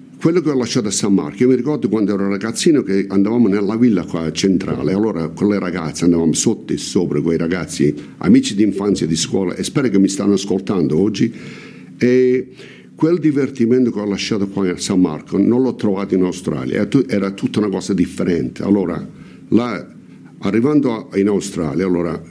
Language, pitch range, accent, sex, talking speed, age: Italian, 90-120 Hz, native, male, 190 wpm, 60-79